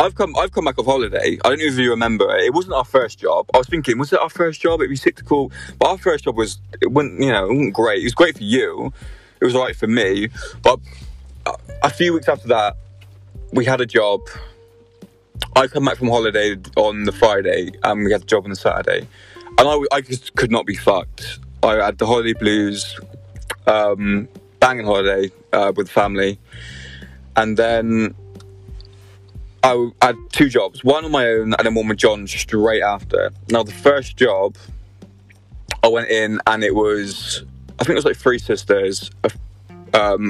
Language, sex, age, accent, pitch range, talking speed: English, male, 20-39, British, 95-120 Hz, 200 wpm